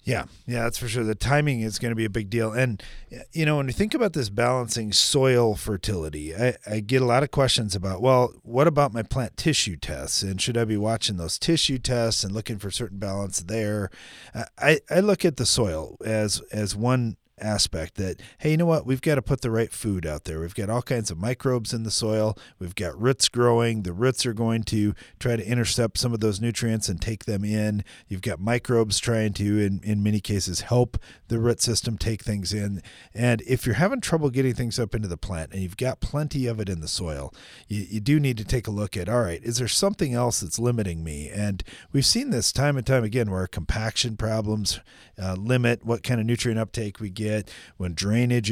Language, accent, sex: English, American, male